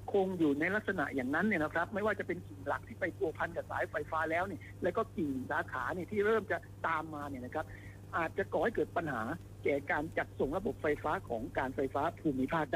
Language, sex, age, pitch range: Thai, male, 60-79, 120-180 Hz